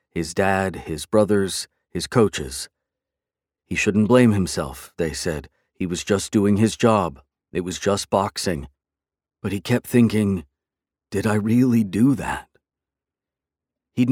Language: English